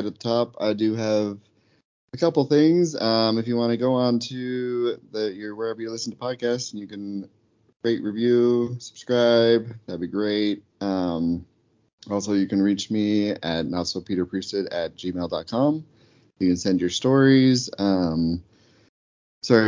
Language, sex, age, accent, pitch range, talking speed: English, male, 30-49, American, 90-115 Hz, 160 wpm